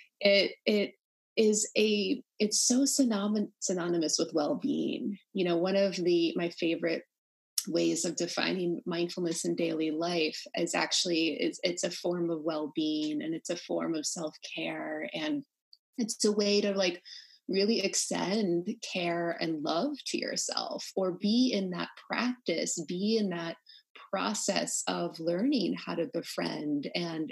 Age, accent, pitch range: 30-49, American, 170-250 Hz